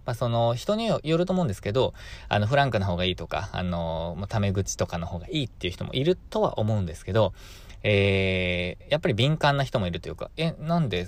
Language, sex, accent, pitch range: Japanese, male, native, 90-120 Hz